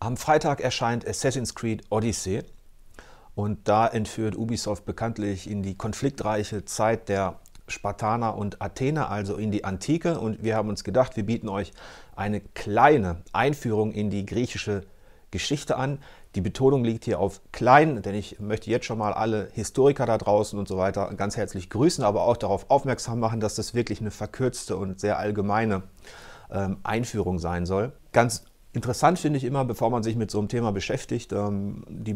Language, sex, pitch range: German, male, 100-120 Hz